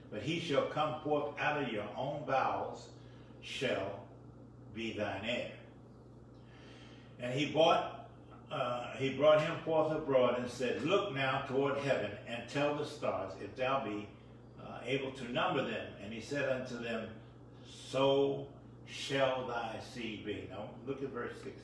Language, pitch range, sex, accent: English, 110-135 Hz, male, American